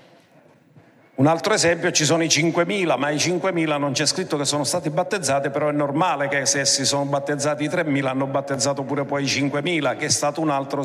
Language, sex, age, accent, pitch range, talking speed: Italian, male, 50-69, native, 140-170 Hz, 210 wpm